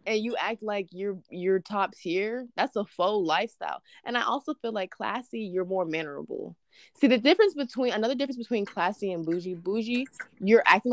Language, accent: English, American